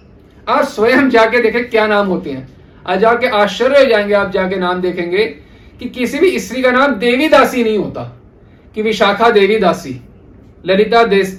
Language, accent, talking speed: Hindi, native, 150 wpm